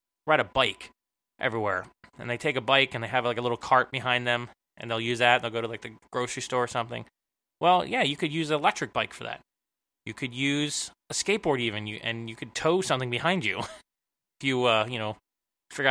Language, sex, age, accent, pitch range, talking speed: English, male, 20-39, American, 120-145 Hz, 230 wpm